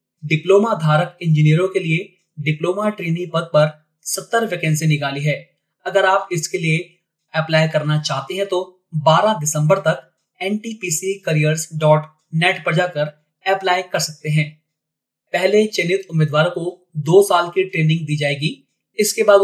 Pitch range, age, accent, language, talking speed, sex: 150-185 Hz, 30-49, native, Hindi, 140 wpm, male